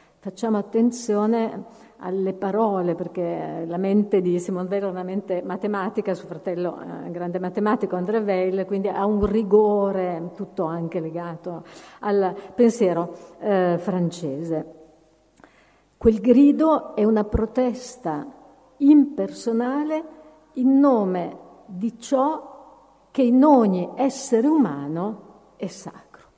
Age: 50-69